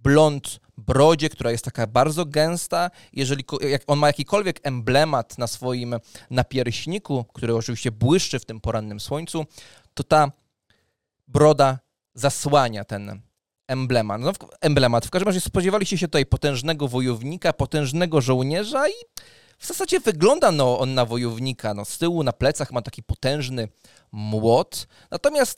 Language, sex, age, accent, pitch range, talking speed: English, male, 20-39, Polish, 120-165 Hz, 130 wpm